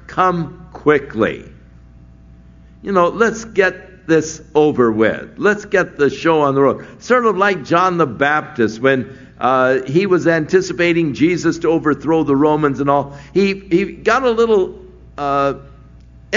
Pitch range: 130-175 Hz